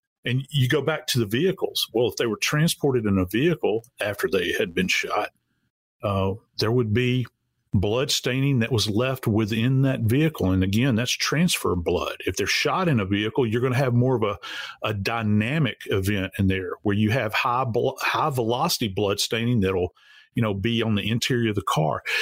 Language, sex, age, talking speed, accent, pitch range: English, male, 40-59, 200 wpm, American, 105-140 Hz